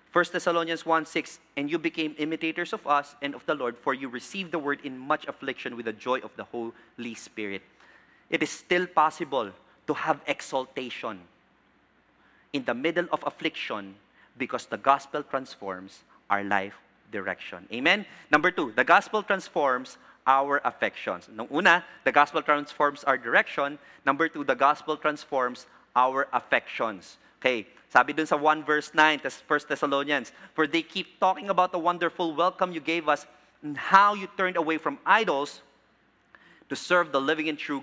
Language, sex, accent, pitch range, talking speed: English, male, Filipino, 140-175 Hz, 160 wpm